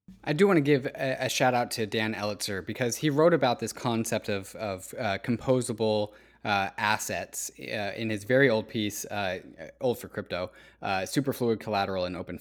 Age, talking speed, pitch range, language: 20-39, 190 wpm, 105-130 Hz, English